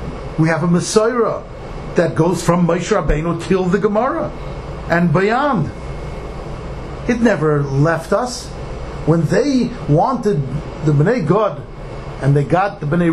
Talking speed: 135 wpm